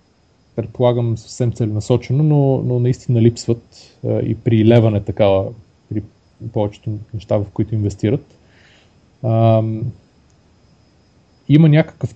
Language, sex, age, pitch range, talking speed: Bulgarian, male, 30-49, 105-125 Hz, 105 wpm